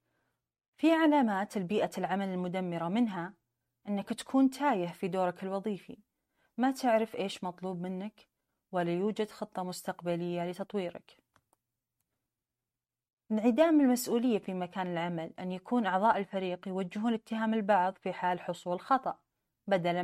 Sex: female